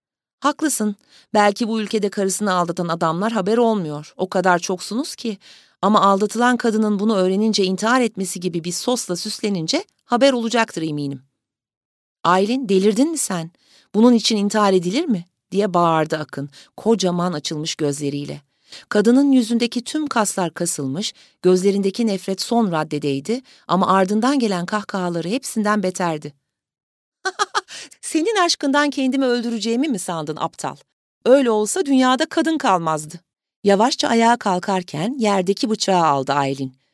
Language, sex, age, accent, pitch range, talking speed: Turkish, female, 40-59, native, 170-240 Hz, 125 wpm